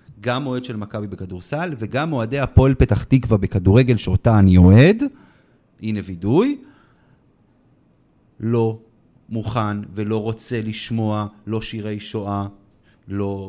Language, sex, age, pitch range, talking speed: Hebrew, male, 30-49, 100-125 Hz, 110 wpm